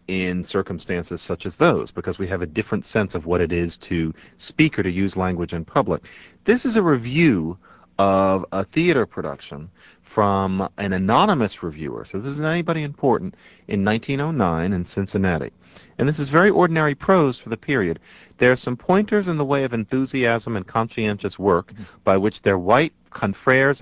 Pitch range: 90-130 Hz